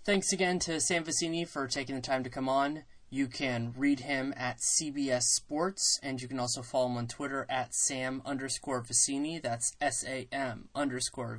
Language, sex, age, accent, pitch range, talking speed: English, male, 20-39, American, 120-140 Hz, 180 wpm